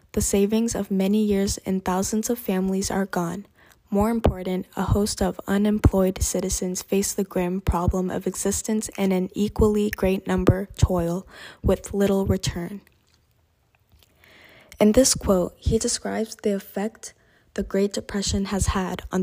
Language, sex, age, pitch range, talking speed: English, female, 20-39, 185-210 Hz, 145 wpm